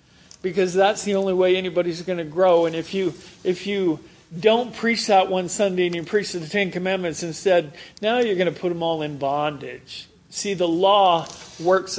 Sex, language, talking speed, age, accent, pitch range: male, English, 195 wpm, 40-59, American, 155-190 Hz